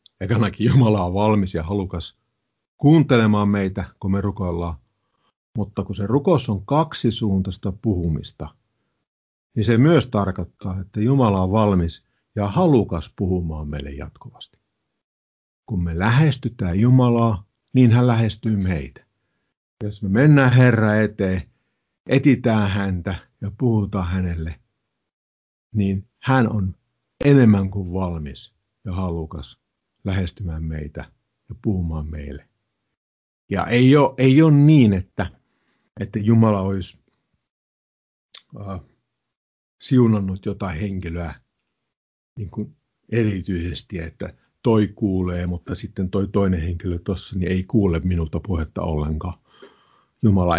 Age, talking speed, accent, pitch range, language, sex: 50-69, 115 wpm, native, 85-110 Hz, Finnish, male